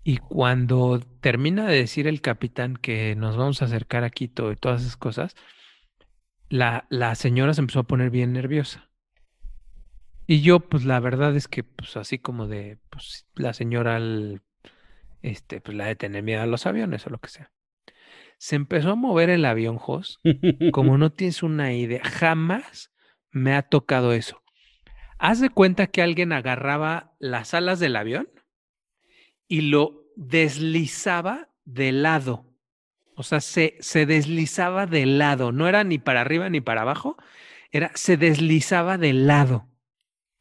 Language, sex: Spanish, male